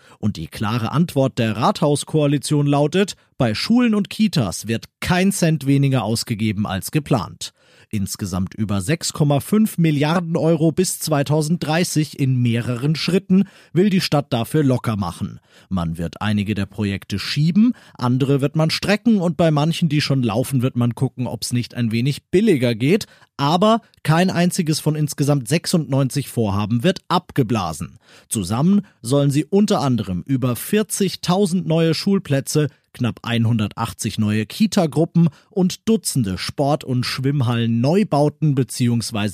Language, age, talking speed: German, 40-59, 135 wpm